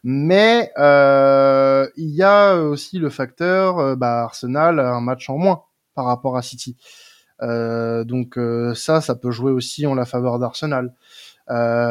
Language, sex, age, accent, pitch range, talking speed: French, male, 20-39, French, 130-180 Hz, 165 wpm